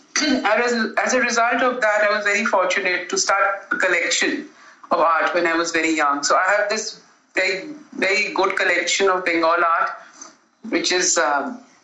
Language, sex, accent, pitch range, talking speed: English, female, Indian, 175-220 Hz, 165 wpm